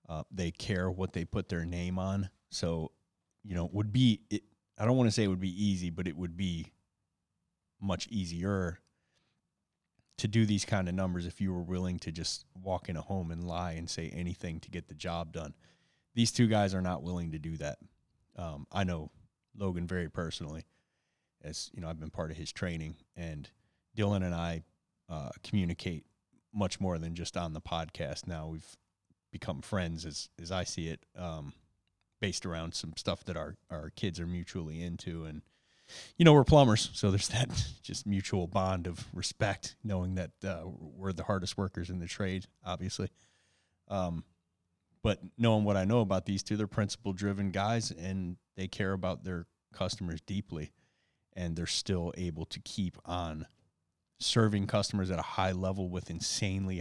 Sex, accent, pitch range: male, American, 85-100 Hz